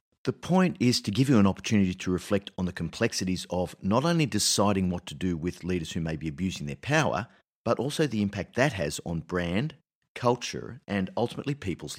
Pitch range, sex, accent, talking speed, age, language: 90-125 Hz, male, Australian, 200 wpm, 50-69, English